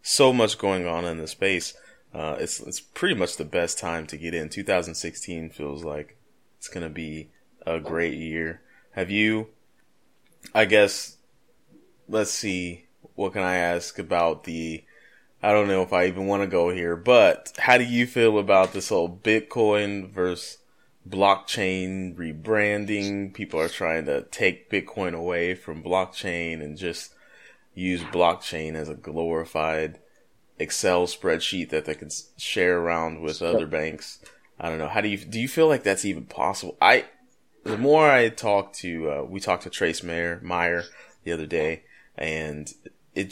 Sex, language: male, English